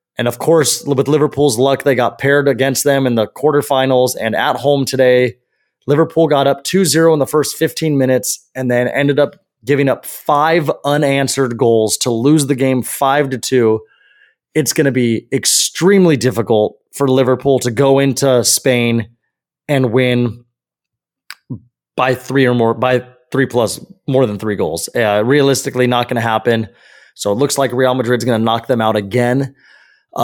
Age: 20-39